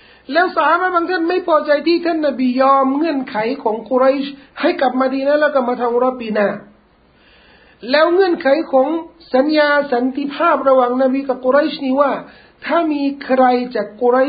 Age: 60-79